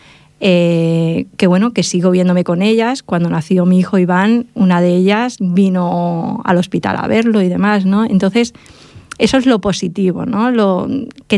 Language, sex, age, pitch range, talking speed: English, female, 20-39, 180-210 Hz, 170 wpm